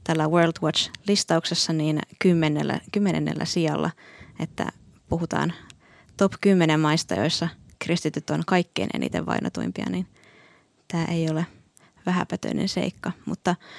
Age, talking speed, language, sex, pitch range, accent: 20-39, 115 wpm, Finnish, female, 165-195 Hz, native